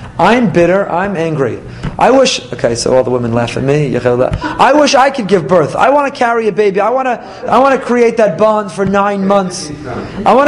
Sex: male